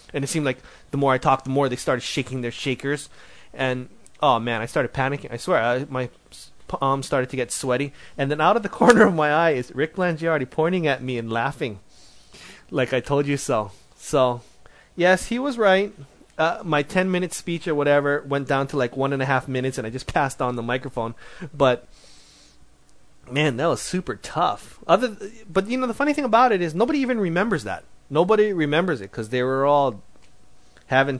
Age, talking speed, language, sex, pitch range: 30-49, 210 wpm, English, male, 120-155 Hz